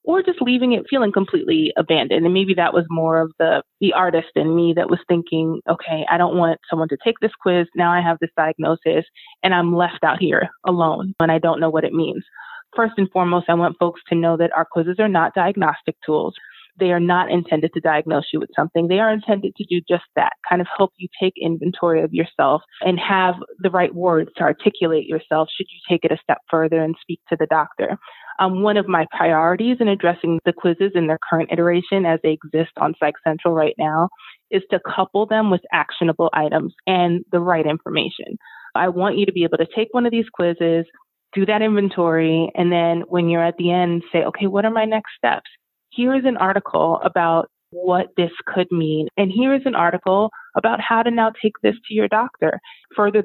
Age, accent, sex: 20-39, American, female